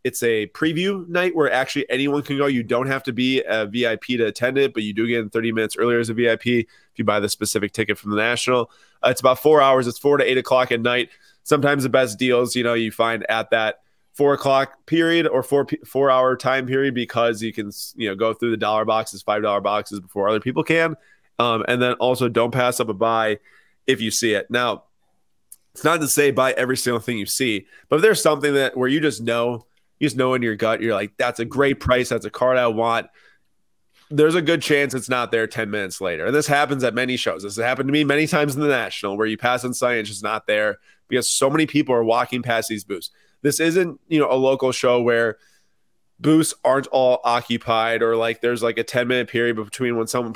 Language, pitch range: English, 115-135 Hz